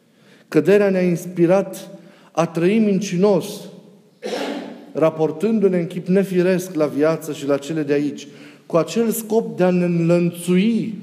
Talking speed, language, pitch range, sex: 130 wpm, Romanian, 155-195 Hz, male